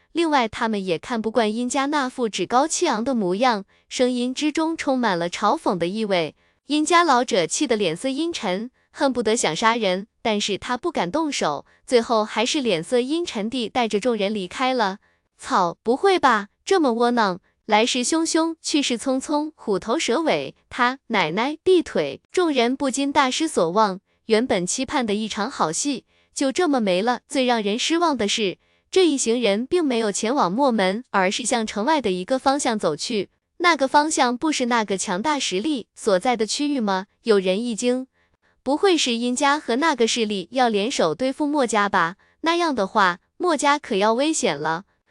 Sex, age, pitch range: female, 20-39, 205-280 Hz